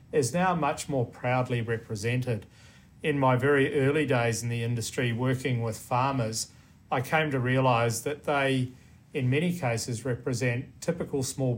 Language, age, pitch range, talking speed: English, 40-59, 115-135 Hz, 150 wpm